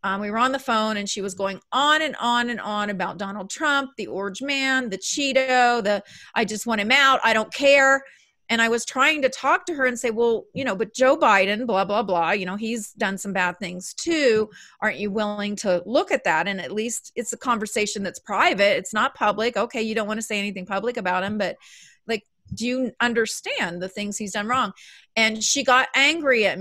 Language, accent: English, American